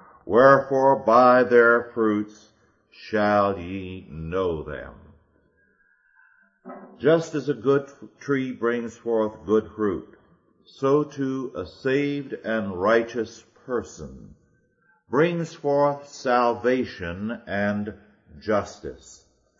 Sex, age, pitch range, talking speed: male, 50-69, 90-125 Hz, 90 wpm